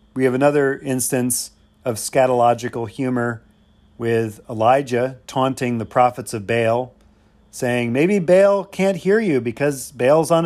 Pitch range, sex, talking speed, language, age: 110-140 Hz, male, 130 wpm, English, 40-59